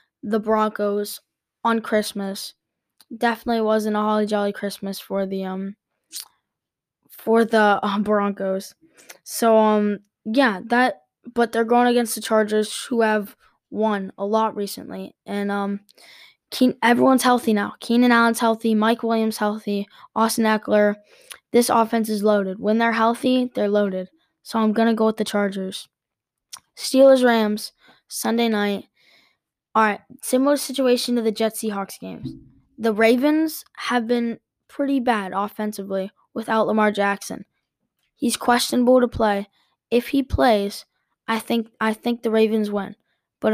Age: 10-29